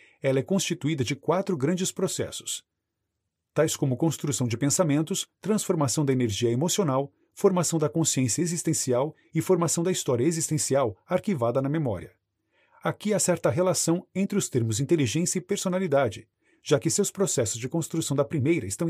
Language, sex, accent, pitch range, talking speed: Portuguese, male, Brazilian, 130-175 Hz, 150 wpm